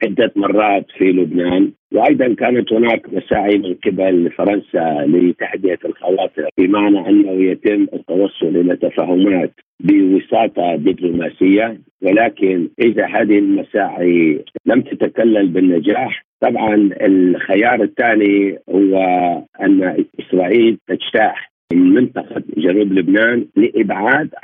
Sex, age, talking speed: male, 50-69, 95 wpm